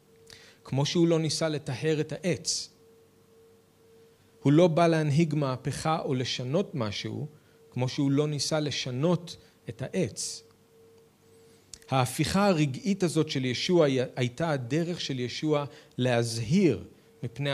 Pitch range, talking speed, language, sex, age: 115-155 Hz, 115 wpm, Hebrew, male, 40-59